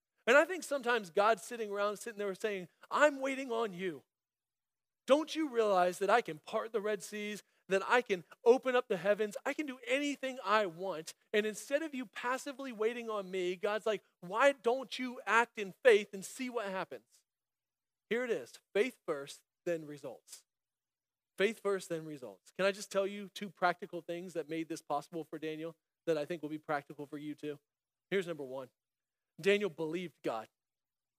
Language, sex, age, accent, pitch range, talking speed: English, male, 40-59, American, 170-230 Hz, 185 wpm